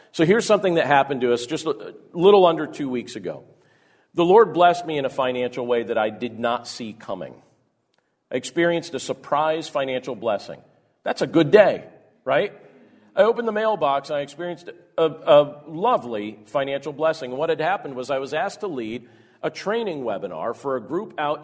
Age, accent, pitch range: 40-59, American, 130-170 Hz